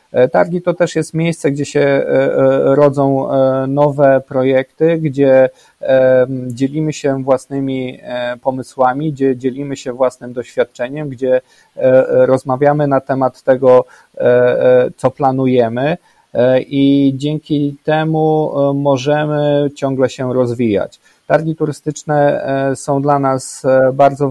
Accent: native